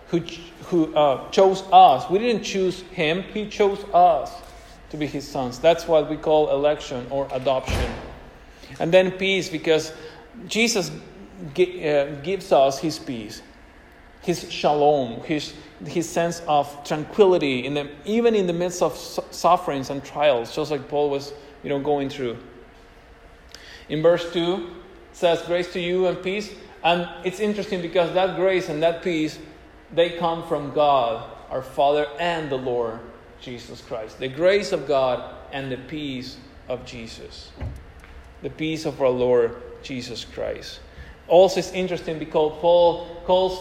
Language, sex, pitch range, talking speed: English, male, 140-185 Hz, 155 wpm